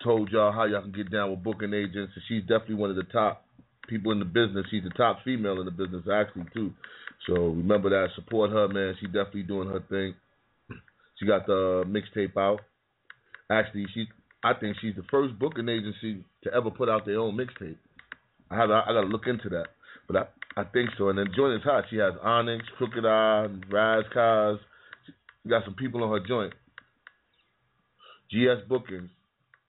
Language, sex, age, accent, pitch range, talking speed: English, male, 30-49, American, 100-125 Hz, 195 wpm